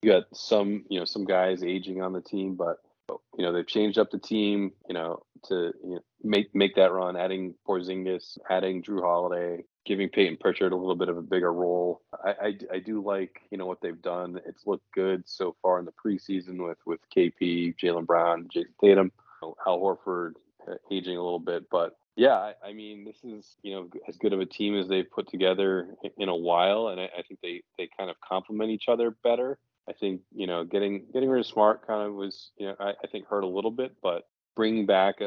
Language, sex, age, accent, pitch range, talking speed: English, male, 20-39, American, 90-100 Hz, 225 wpm